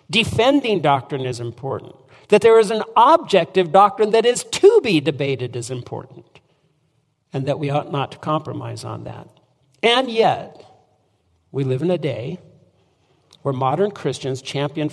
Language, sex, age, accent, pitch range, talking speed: English, male, 60-79, American, 130-175 Hz, 150 wpm